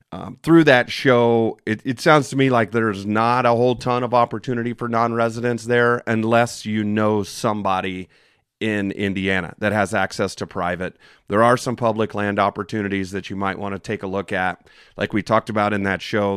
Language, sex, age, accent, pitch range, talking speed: English, male, 30-49, American, 100-120 Hz, 195 wpm